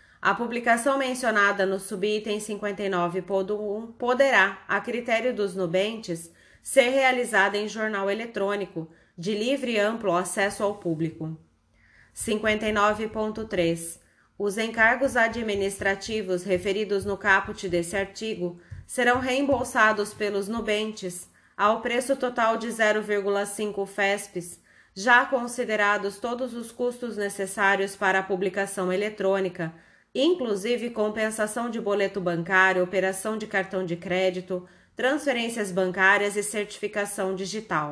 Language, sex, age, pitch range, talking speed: Portuguese, female, 20-39, 190-225 Hz, 105 wpm